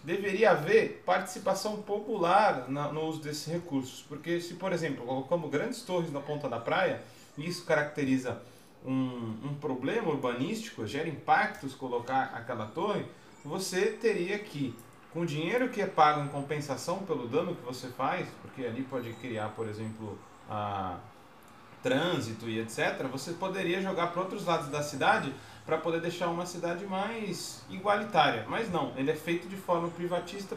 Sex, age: male, 30-49